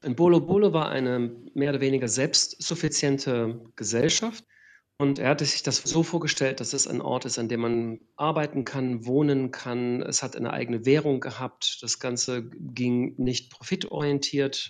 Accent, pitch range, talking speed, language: German, 125-150 Hz, 160 wpm, German